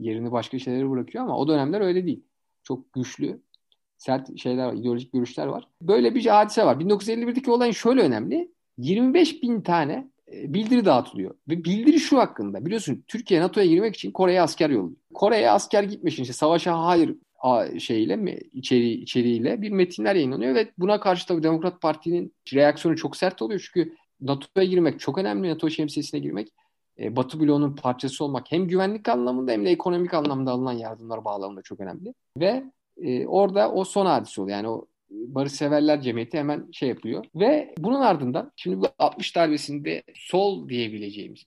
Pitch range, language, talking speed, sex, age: 125-190 Hz, Turkish, 165 wpm, male, 50-69